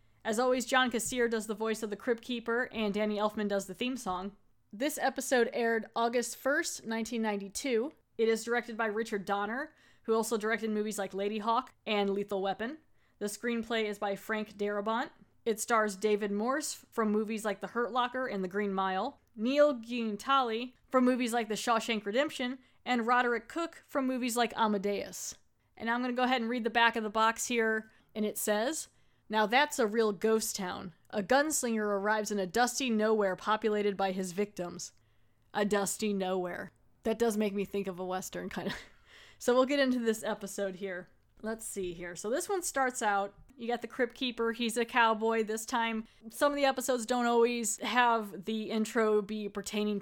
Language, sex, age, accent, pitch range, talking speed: English, female, 20-39, American, 205-240 Hz, 190 wpm